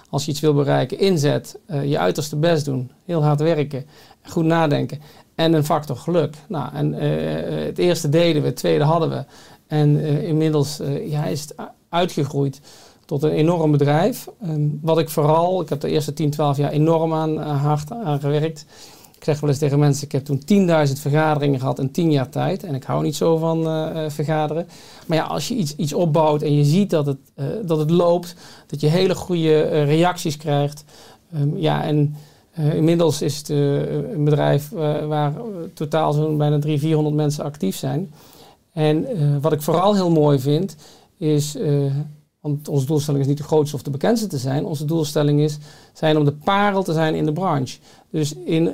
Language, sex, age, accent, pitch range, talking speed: Dutch, male, 50-69, Dutch, 145-160 Hz, 200 wpm